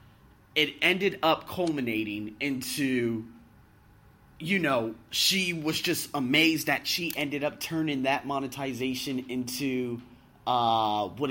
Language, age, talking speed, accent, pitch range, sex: English, 30-49, 110 wpm, American, 125-165 Hz, male